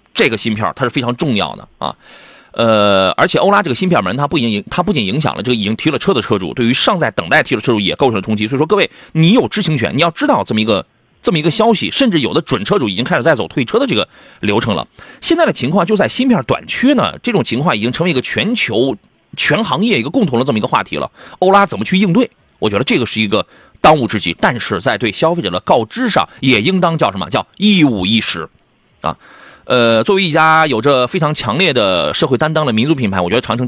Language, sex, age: Chinese, male, 30-49